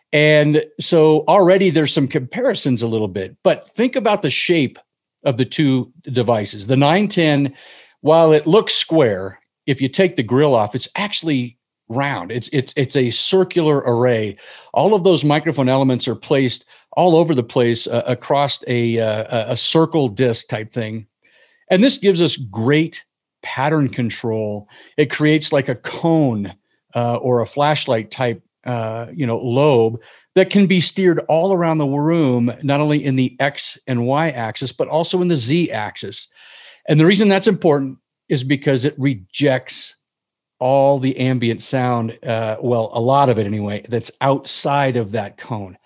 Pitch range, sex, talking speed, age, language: 120-155 Hz, male, 165 wpm, 50-69, English